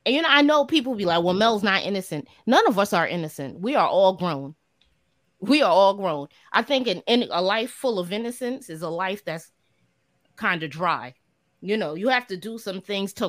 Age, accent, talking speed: 30-49, American, 215 wpm